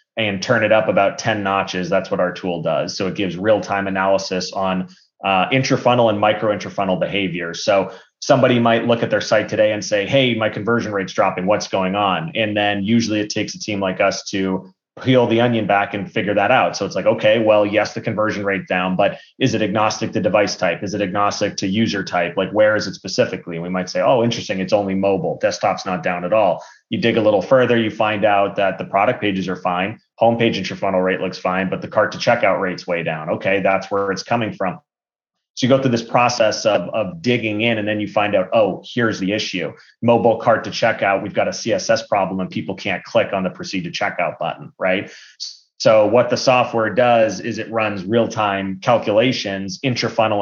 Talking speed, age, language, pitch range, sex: 220 wpm, 30-49, English, 95-115 Hz, male